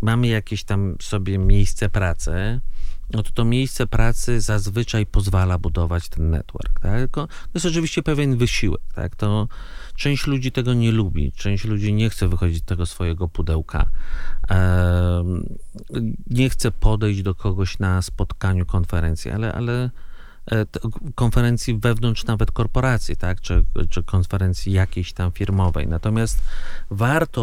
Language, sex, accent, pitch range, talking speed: Polish, male, native, 90-115 Hz, 135 wpm